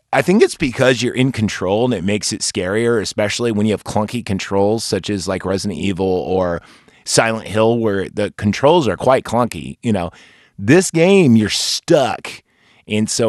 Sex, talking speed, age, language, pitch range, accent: male, 180 wpm, 30-49, English, 105-140 Hz, American